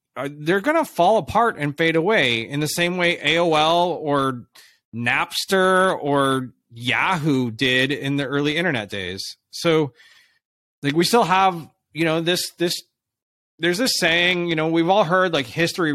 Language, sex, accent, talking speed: English, male, American, 160 wpm